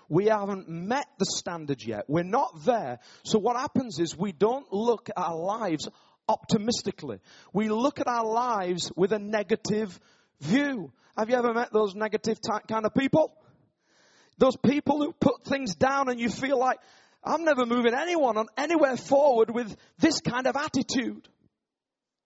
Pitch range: 205-270 Hz